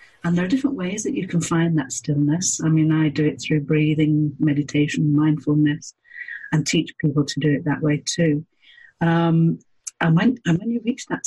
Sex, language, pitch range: female, English, 150-175 Hz